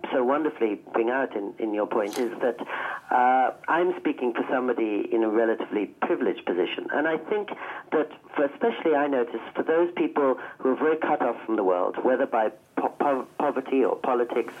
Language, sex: English, male